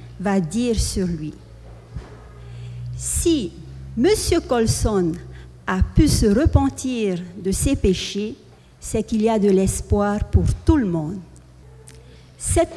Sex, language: female, French